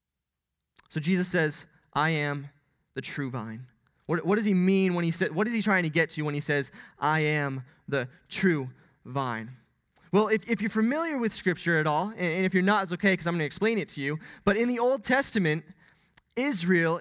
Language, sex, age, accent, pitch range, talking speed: English, male, 20-39, American, 160-210 Hz, 210 wpm